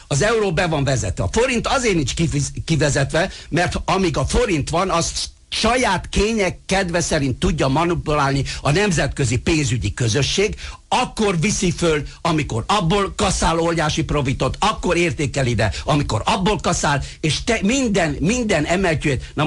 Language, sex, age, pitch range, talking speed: Hungarian, male, 60-79, 130-180 Hz, 140 wpm